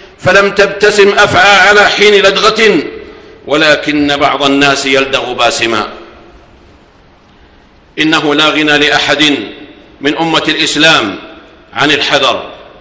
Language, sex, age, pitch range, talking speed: Arabic, male, 50-69, 160-195 Hz, 95 wpm